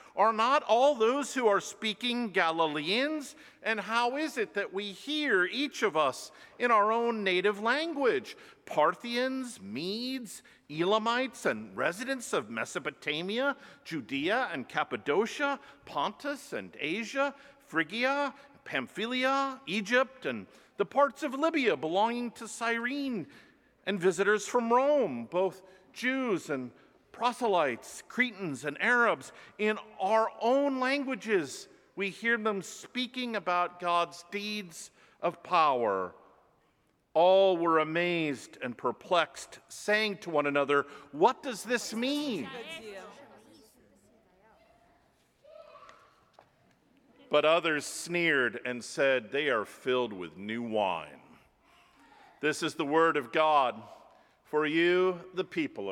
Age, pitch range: 50-69, 175-260 Hz